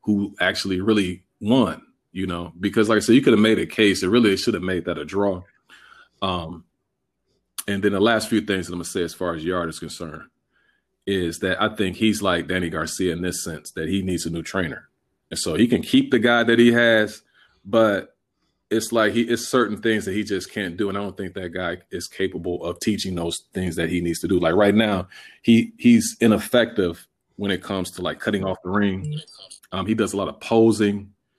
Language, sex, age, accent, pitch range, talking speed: English, male, 30-49, American, 90-110 Hz, 230 wpm